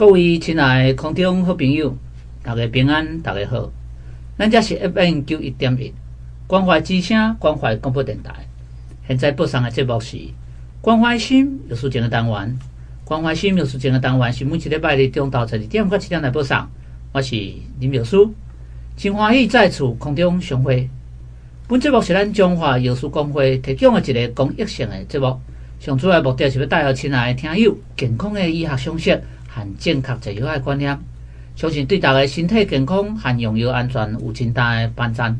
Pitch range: 115-155 Hz